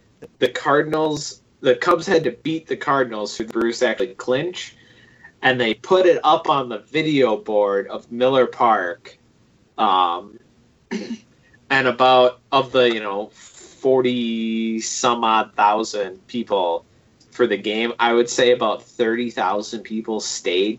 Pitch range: 110-145 Hz